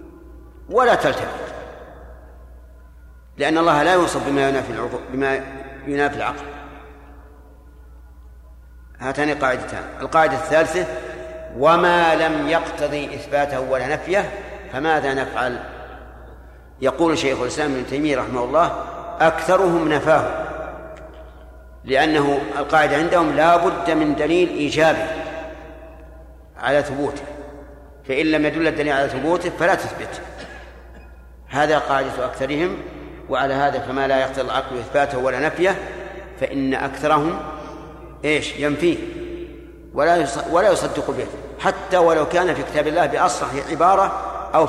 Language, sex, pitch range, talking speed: Arabic, male, 125-165 Hz, 105 wpm